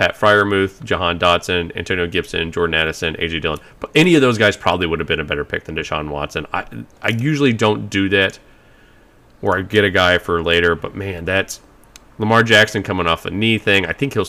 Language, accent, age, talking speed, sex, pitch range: English, American, 30-49, 215 wpm, male, 85-105 Hz